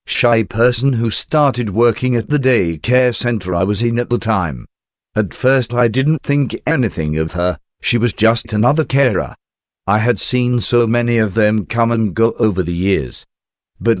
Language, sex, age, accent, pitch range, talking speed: English, male, 50-69, British, 105-125 Hz, 185 wpm